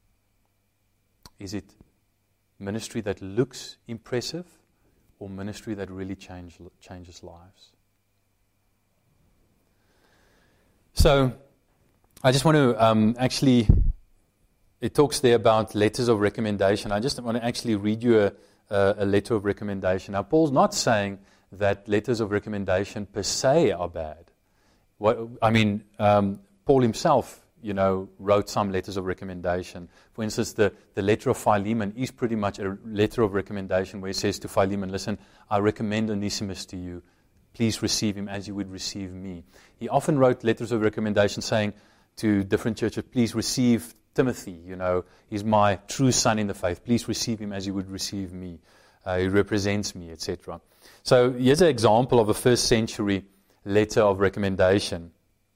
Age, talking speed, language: 30-49, 150 wpm, English